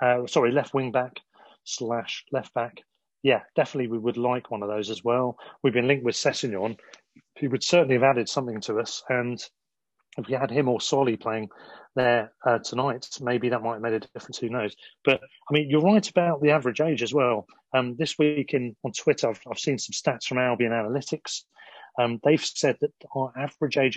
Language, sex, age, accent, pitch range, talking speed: English, male, 30-49, British, 115-140 Hz, 210 wpm